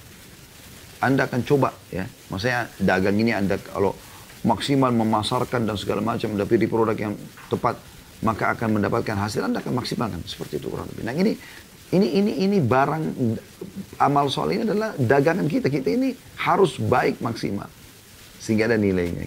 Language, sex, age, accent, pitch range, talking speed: Indonesian, male, 30-49, native, 100-130 Hz, 145 wpm